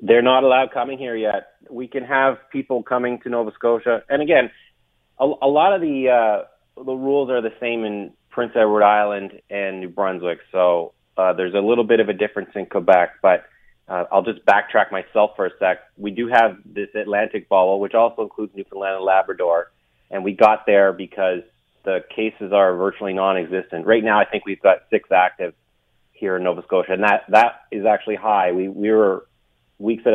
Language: English